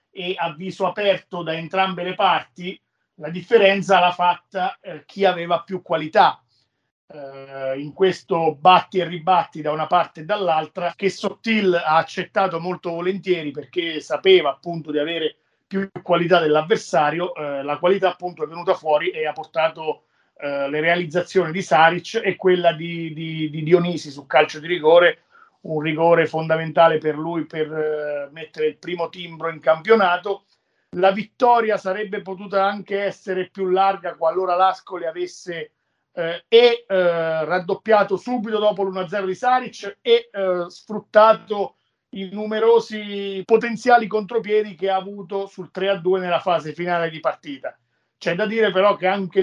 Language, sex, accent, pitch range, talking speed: Italian, male, native, 160-195 Hz, 140 wpm